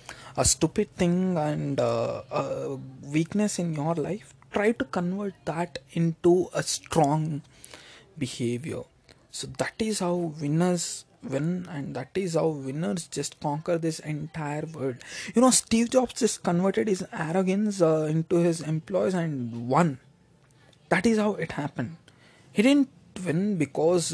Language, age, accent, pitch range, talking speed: English, 20-39, Indian, 140-180 Hz, 140 wpm